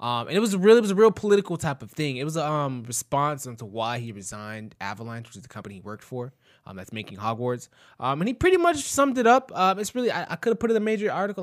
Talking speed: 275 wpm